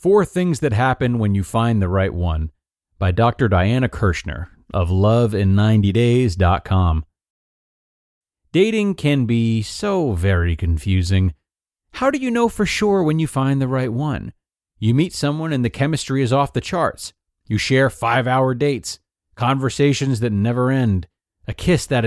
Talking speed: 150 wpm